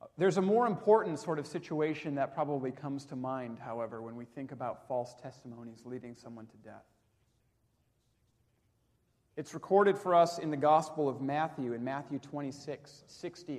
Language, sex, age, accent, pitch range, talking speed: English, male, 40-59, American, 120-180 Hz, 160 wpm